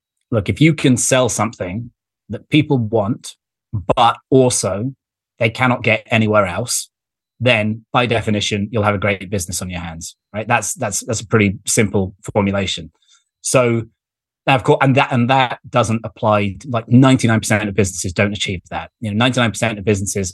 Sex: male